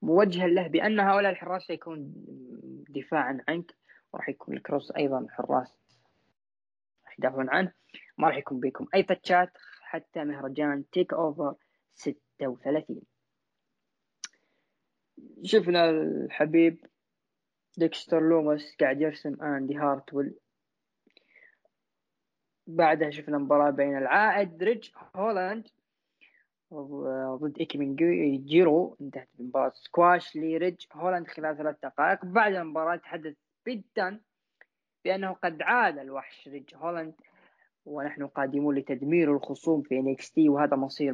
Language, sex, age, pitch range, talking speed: Arabic, female, 20-39, 140-180 Hz, 105 wpm